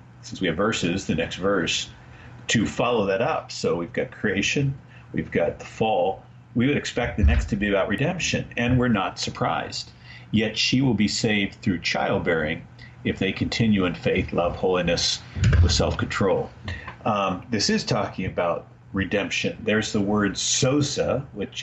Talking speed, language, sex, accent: 165 wpm, English, male, American